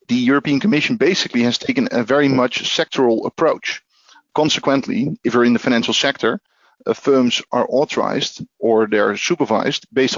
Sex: male